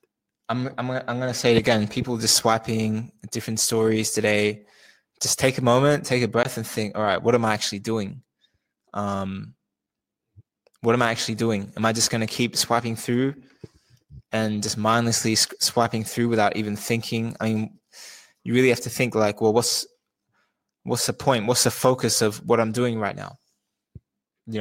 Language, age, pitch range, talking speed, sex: English, 20-39, 110-130 Hz, 185 wpm, male